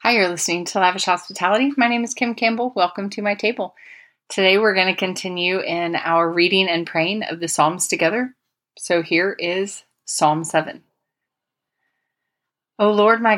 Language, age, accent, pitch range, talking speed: English, 30-49, American, 175-225 Hz, 165 wpm